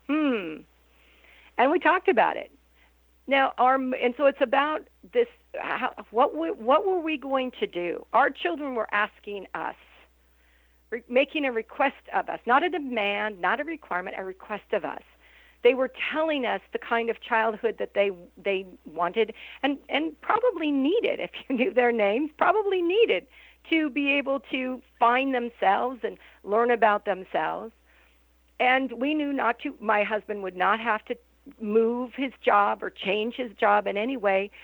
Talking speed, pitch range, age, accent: 170 wpm, 195-270 Hz, 50-69, American